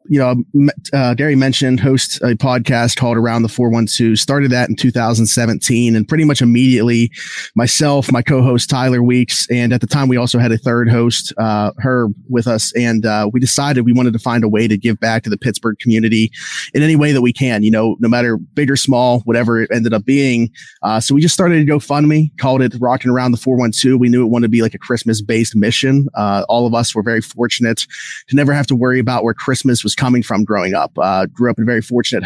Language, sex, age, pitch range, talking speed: English, male, 30-49, 115-130 Hz, 245 wpm